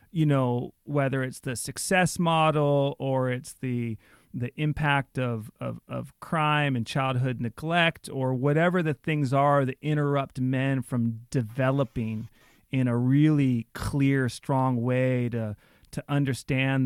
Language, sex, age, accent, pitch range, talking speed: English, male, 40-59, American, 125-160 Hz, 135 wpm